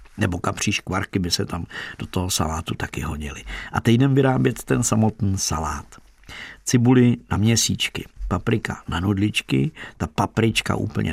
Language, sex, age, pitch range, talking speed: Czech, male, 50-69, 100-120 Hz, 145 wpm